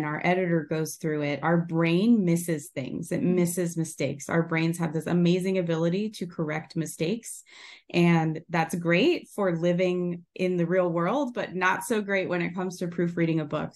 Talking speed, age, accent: 180 wpm, 20-39, American